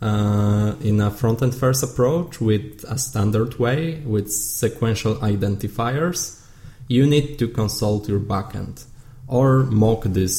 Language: English